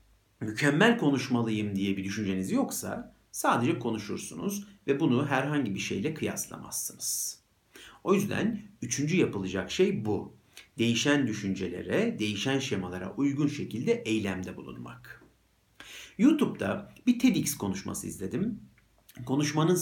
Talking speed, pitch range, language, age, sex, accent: 105 wpm, 100-145 Hz, Turkish, 50-69, male, native